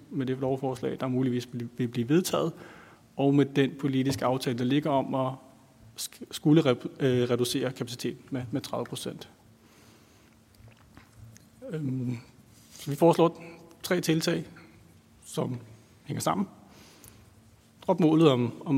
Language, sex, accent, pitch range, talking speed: Danish, male, native, 125-155 Hz, 100 wpm